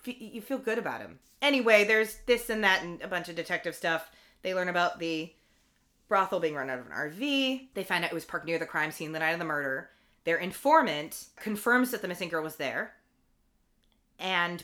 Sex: female